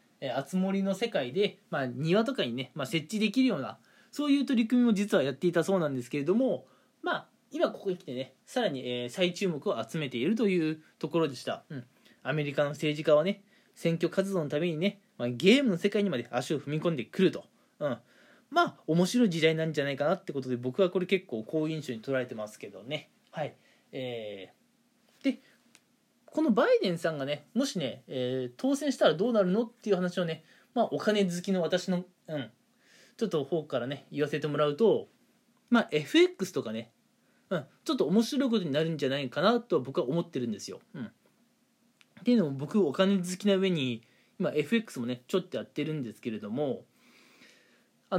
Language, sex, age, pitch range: Japanese, male, 20-39, 145-220 Hz